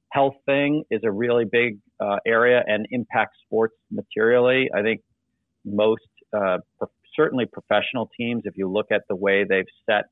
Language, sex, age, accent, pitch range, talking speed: English, male, 40-59, American, 100-120 Hz, 160 wpm